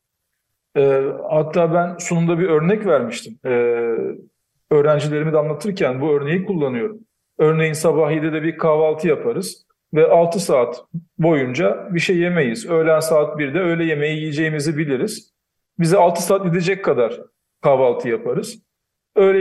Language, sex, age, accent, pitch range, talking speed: Turkish, male, 40-59, native, 150-200 Hz, 125 wpm